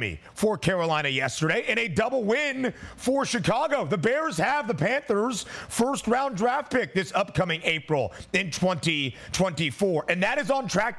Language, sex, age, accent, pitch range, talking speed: English, male, 30-49, American, 150-195 Hz, 145 wpm